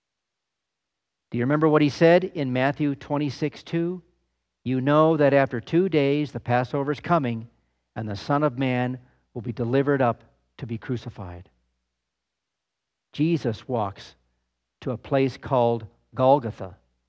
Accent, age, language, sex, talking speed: American, 50-69, English, male, 135 wpm